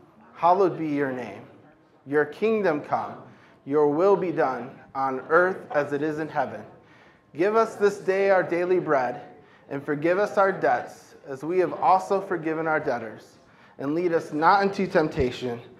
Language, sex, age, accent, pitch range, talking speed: English, male, 20-39, American, 115-150 Hz, 165 wpm